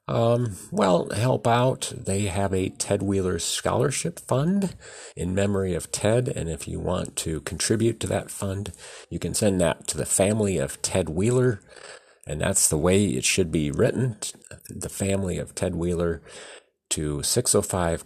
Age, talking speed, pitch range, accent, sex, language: 40-59, 165 wpm, 75-100 Hz, American, male, English